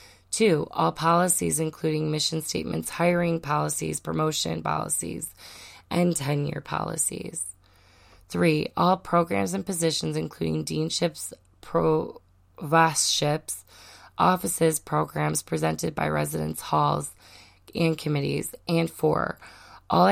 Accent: American